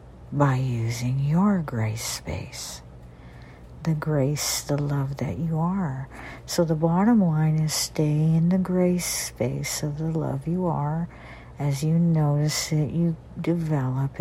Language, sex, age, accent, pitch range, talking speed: English, female, 60-79, American, 120-170 Hz, 140 wpm